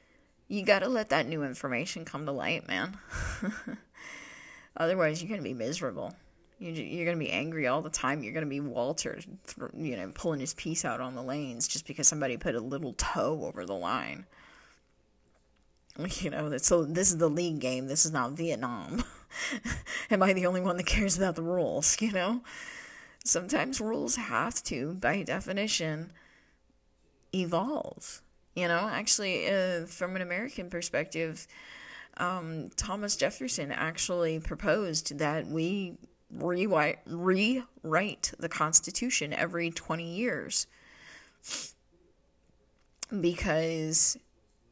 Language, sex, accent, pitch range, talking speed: English, female, American, 155-190 Hz, 140 wpm